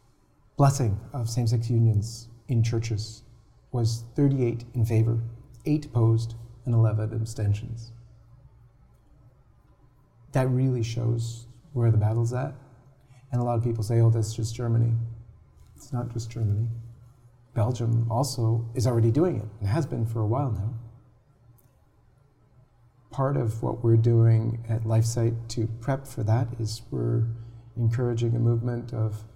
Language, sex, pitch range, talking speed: English, male, 115-125 Hz, 135 wpm